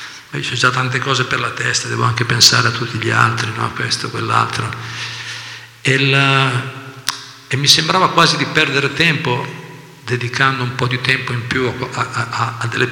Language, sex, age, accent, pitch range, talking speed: Italian, male, 50-69, native, 120-135 Hz, 190 wpm